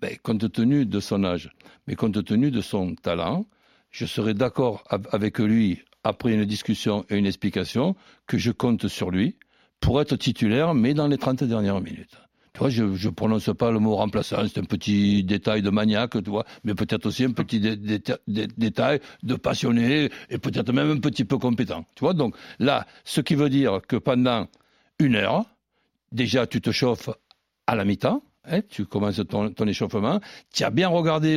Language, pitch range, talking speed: French, 110-145 Hz, 195 wpm